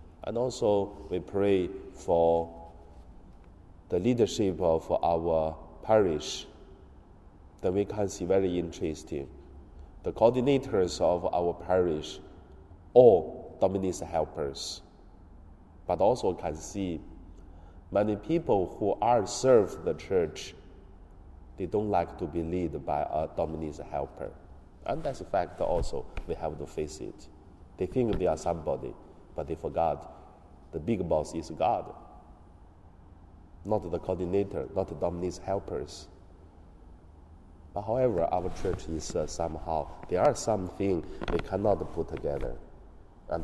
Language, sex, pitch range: Chinese, male, 80-90 Hz